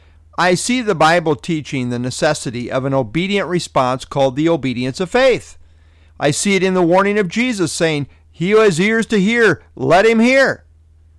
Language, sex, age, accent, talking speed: English, male, 50-69, American, 180 wpm